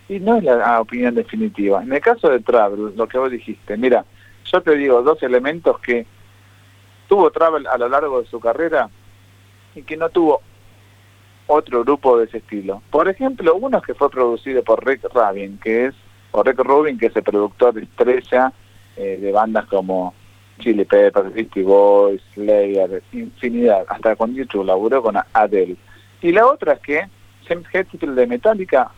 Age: 40-59